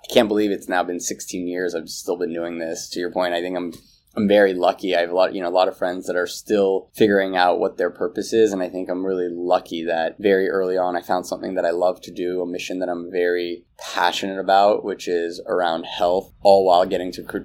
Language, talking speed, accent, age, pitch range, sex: English, 255 wpm, American, 20-39, 85-100 Hz, male